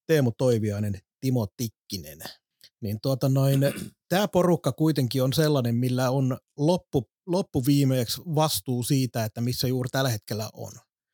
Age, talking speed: 30-49, 125 wpm